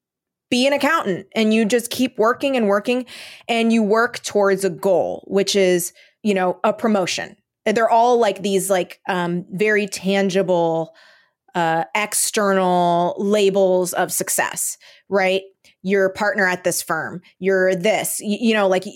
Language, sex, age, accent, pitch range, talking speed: English, female, 20-39, American, 190-240 Hz, 155 wpm